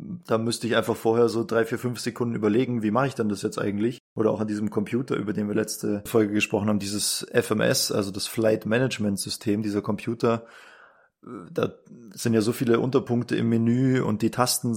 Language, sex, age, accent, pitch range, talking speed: German, male, 20-39, German, 105-115 Hz, 205 wpm